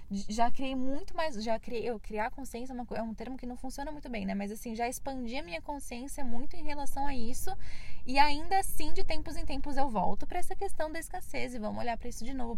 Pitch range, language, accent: 230-280 Hz, Portuguese, Brazilian